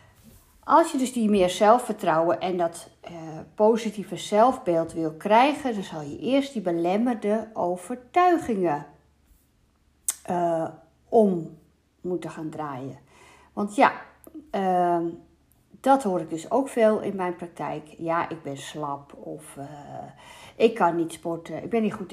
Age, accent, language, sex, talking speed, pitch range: 50-69, Dutch, Dutch, female, 140 wpm, 170-225 Hz